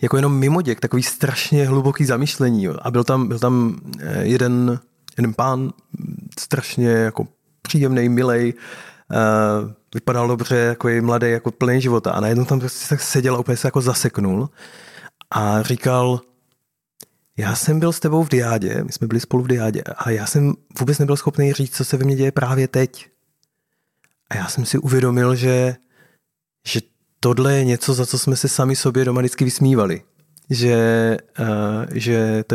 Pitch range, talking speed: 115-135 Hz, 165 wpm